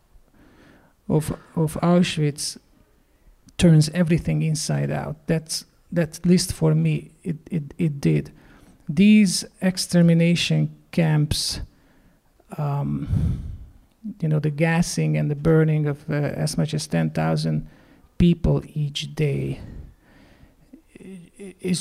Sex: male